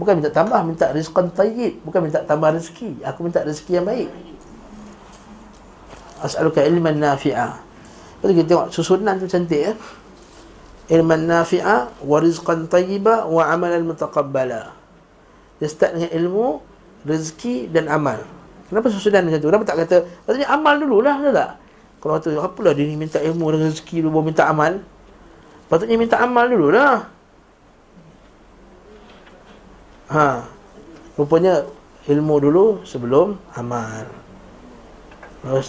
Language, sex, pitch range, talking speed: Malay, male, 155-195 Hz, 130 wpm